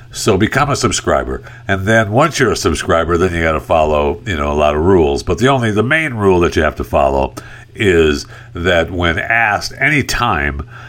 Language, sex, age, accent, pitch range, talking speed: English, male, 60-79, American, 80-120 Hz, 210 wpm